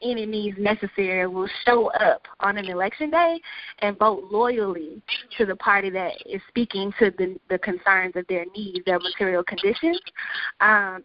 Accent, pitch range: American, 185-220 Hz